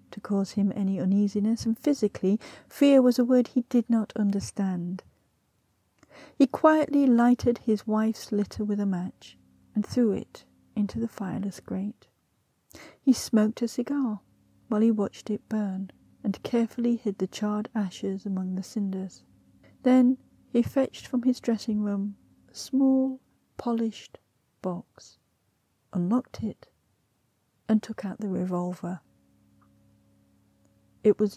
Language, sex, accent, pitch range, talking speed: English, female, British, 185-230 Hz, 130 wpm